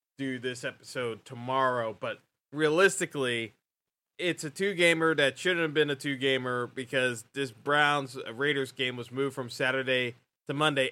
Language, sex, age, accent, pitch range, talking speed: English, male, 20-39, American, 120-145 Hz, 145 wpm